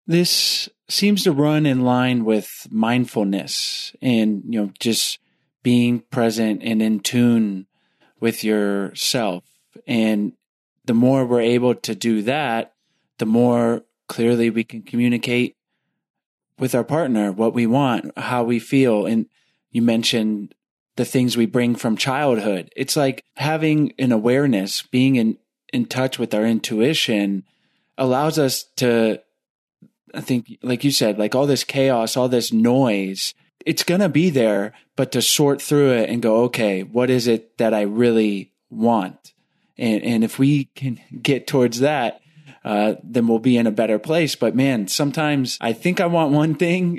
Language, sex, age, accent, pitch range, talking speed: English, male, 30-49, American, 110-135 Hz, 155 wpm